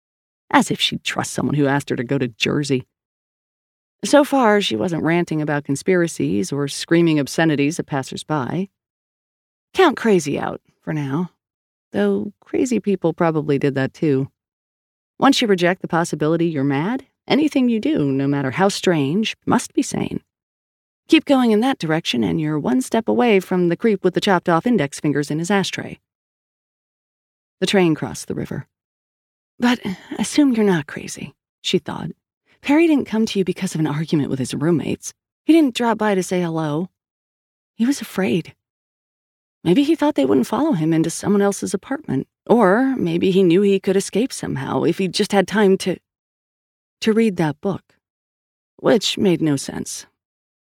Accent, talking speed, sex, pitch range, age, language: American, 165 wpm, female, 150-215 Hz, 30-49, English